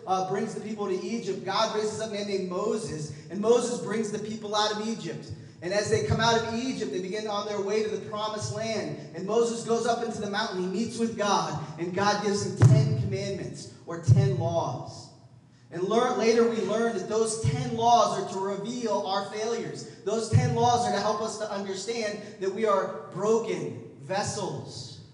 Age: 20-39